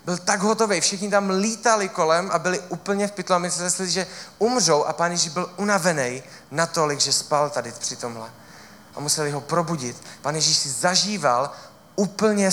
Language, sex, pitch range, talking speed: Czech, male, 140-185 Hz, 175 wpm